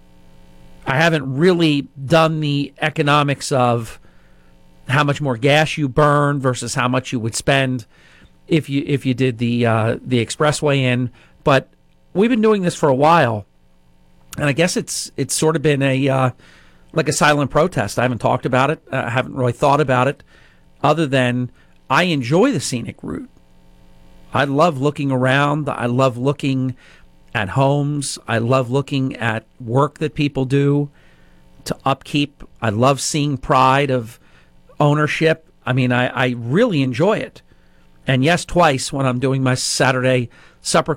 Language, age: English, 40-59